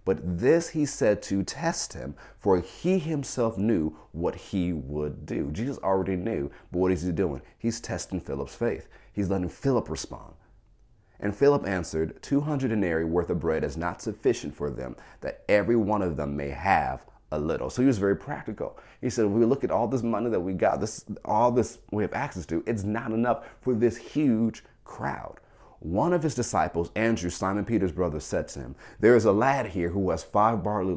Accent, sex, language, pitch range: American, male, English, 80-110 Hz